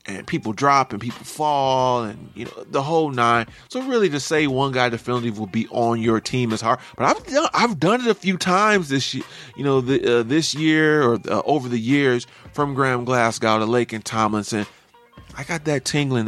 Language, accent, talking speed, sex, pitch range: English, American, 220 wpm, male, 120-160 Hz